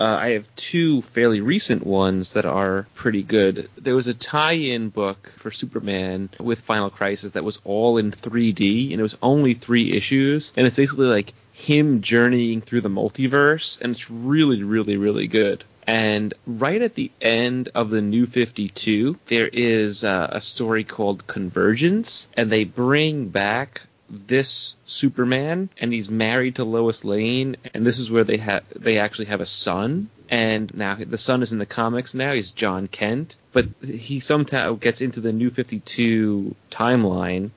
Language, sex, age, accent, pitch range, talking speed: English, male, 30-49, American, 105-125 Hz, 170 wpm